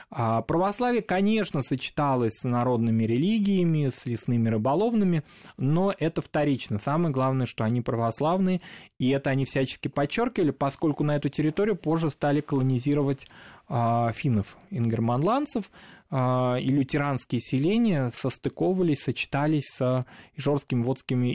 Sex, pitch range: male, 120-145 Hz